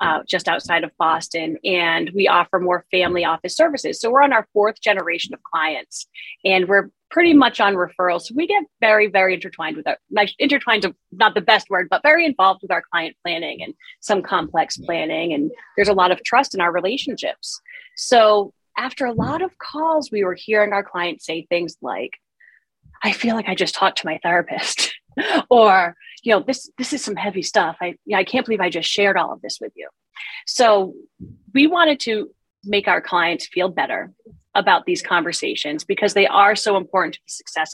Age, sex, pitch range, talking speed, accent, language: 30-49, female, 180-250 Hz, 200 wpm, American, English